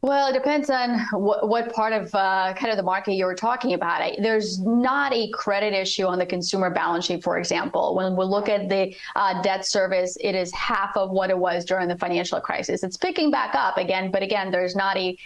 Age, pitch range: 30-49, 190-230 Hz